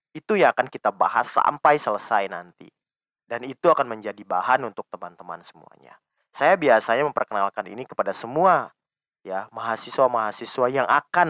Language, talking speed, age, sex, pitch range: Indonesian, 140 wpm, 20-39, male, 110-165 Hz